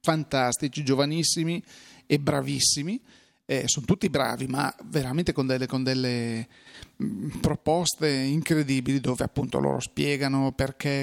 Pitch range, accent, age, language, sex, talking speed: 130-150 Hz, native, 30-49, Italian, male, 110 wpm